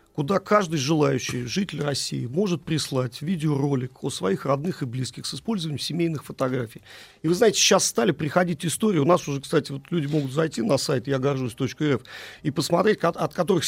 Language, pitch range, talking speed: Russian, 135-170 Hz, 175 wpm